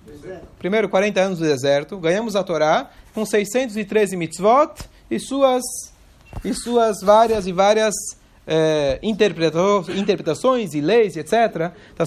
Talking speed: 110 wpm